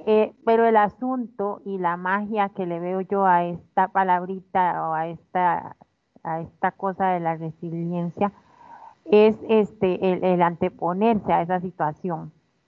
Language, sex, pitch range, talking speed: Spanish, female, 180-215 Hz, 145 wpm